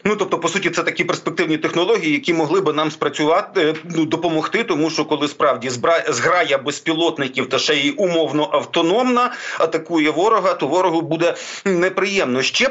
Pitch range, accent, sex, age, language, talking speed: 155-190 Hz, native, male, 40-59, Ukrainian, 150 wpm